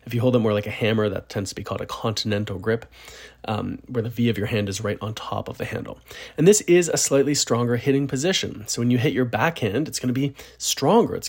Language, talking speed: English, 265 wpm